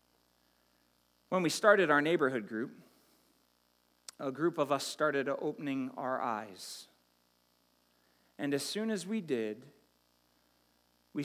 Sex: male